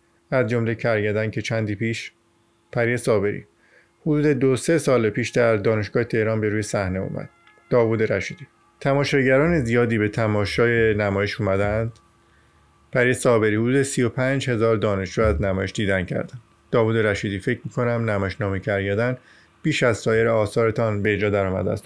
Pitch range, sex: 105-120 Hz, male